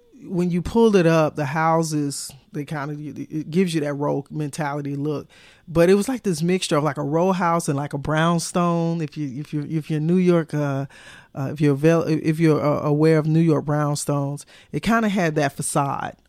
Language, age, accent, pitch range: English, 40-59, American, 145-165 Hz